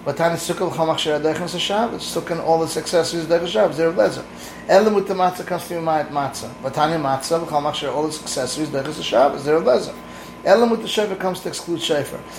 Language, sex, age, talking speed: English, male, 30-49, 195 wpm